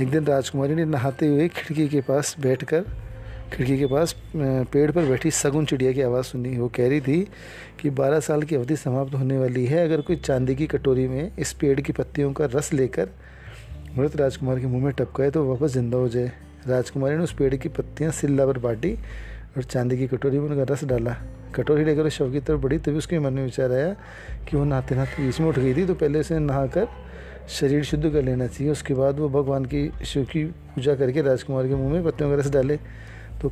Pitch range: 125-150 Hz